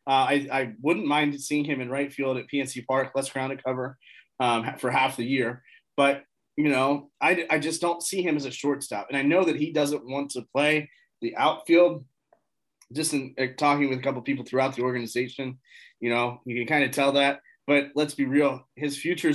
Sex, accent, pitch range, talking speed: male, American, 135-155 Hz, 215 wpm